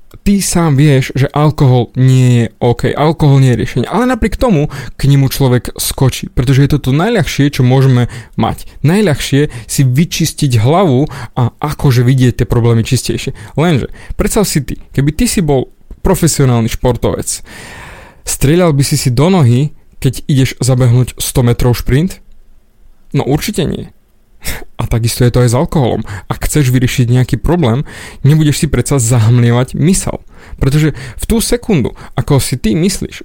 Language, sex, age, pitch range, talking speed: Slovak, male, 20-39, 125-155 Hz, 155 wpm